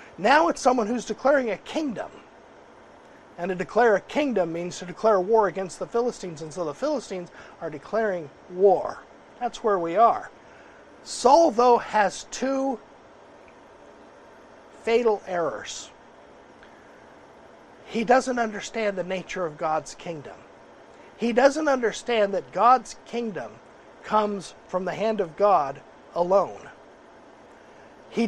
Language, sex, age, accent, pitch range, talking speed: English, male, 50-69, American, 175-230 Hz, 125 wpm